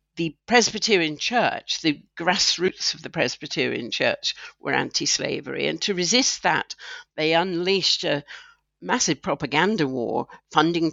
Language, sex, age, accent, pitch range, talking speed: English, female, 60-79, British, 150-200 Hz, 120 wpm